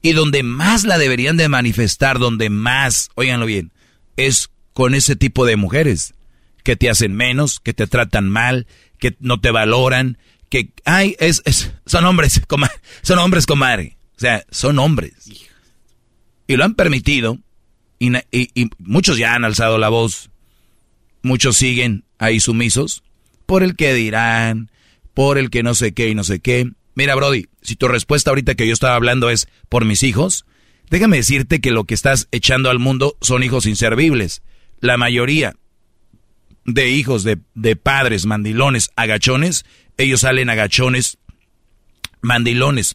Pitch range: 110-135 Hz